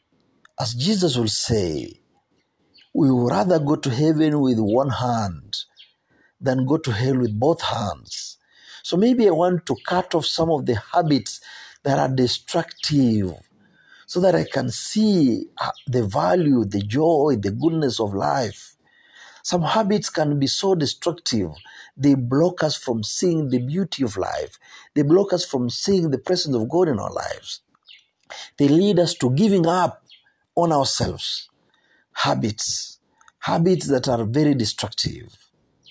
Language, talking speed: Swahili, 145 wpm